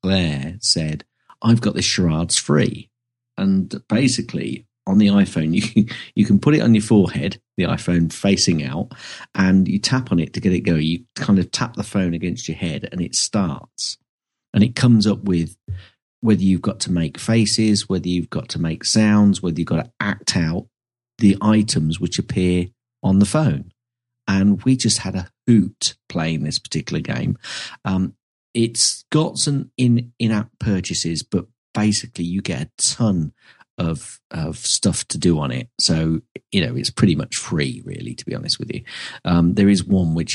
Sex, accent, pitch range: male, British, 85-115 Hz